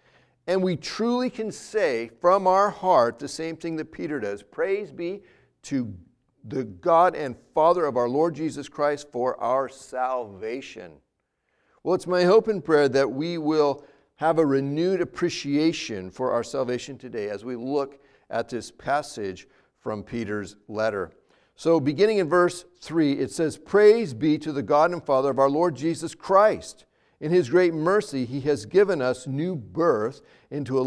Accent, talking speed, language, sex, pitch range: American, 165 wpm, English, male, 135-180 Hz